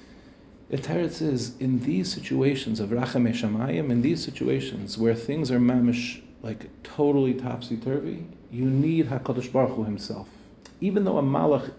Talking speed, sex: 145 wpm, male